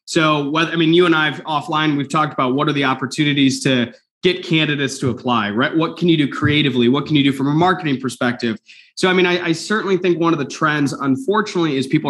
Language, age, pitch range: English, 20-39, 140-180 Hz